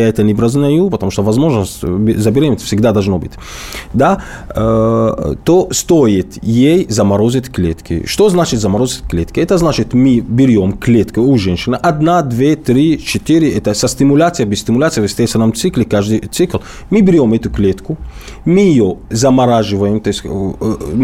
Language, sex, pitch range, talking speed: Russian, male, 105-140 Hz, 150 wpm